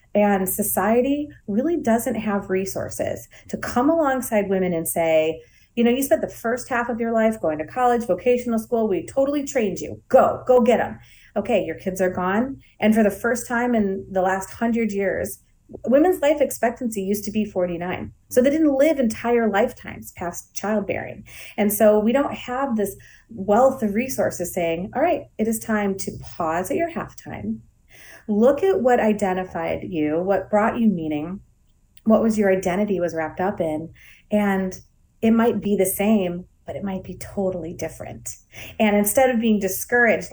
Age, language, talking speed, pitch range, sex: 30-49, English, 175 wpm, 185-235 Hz, female